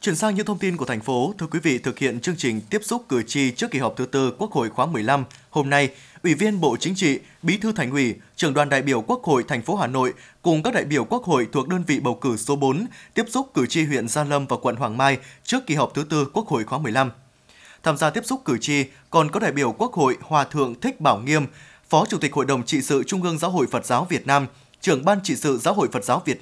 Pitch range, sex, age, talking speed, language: 130-170 Hz, male, 20-39, 280 wpm, Vietnamese